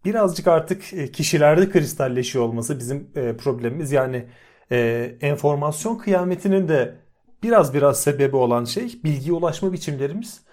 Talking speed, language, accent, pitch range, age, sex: 115 wpm, Turkish, native, 135-175 Hz, 40-59, male